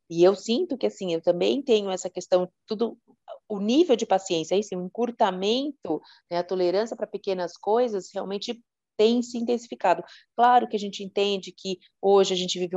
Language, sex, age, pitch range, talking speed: Portuguese, female, 30-49, 170-210 Hz, 170 wpm